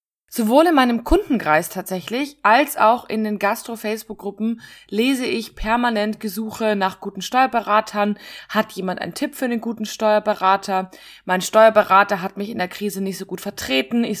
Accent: German